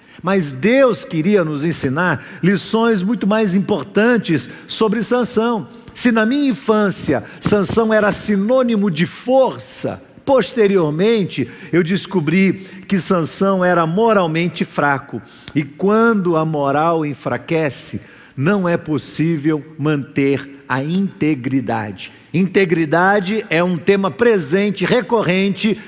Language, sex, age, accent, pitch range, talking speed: Portuguese, male, 50-69, Brazilian, 160-220 Hz, 105 wpm